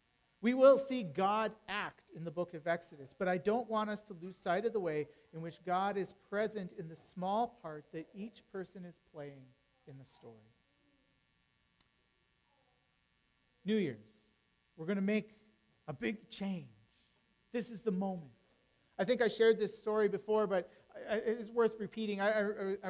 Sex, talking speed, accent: male, 170 wpm, American